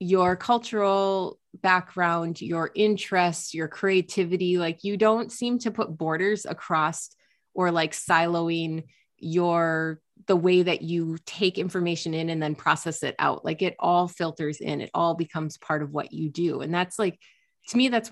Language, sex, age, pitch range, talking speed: English, female, 30-49, 155-185 Hz, 165 wpm